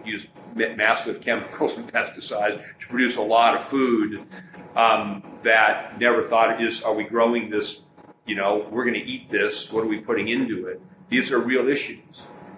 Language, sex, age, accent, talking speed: English, male, 40-59, American, 180 wpm